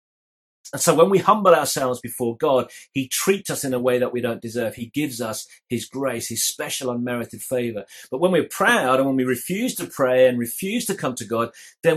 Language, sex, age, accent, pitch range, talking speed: English, male, 30-49, British, 125-170 Hz, 220 wpm